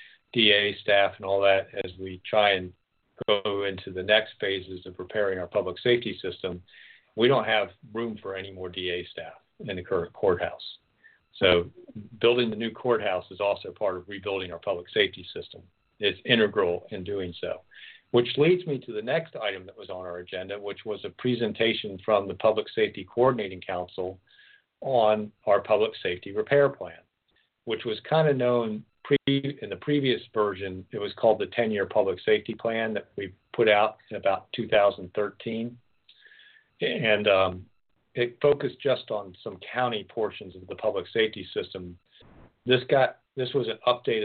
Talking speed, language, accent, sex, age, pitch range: 170 wpm, English, American, male, 50-69, 100-130 Hz